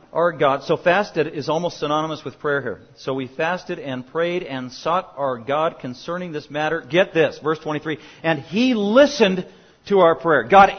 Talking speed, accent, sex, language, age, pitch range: 185 wpm, American, male, English, 40-59, 140-180 Hz